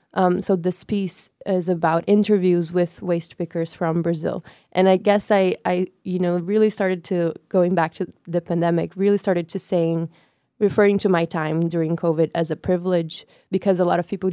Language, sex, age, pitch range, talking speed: English, female, 20-39, 170-190 Hz, 190 wpm